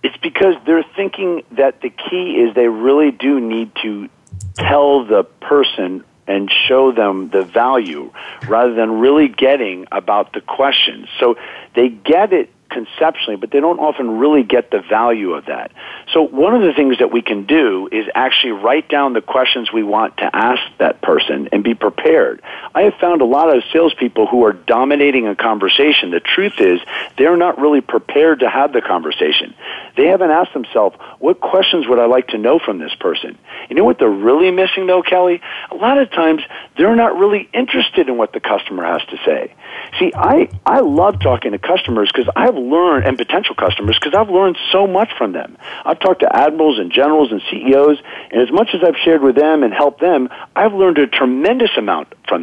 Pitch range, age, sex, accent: 120-190 Hz, 50-69, male, American